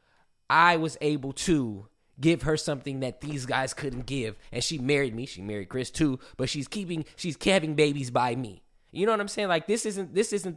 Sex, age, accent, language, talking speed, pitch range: male, 20-39, American, English, 215 wpm, 130-170 Hz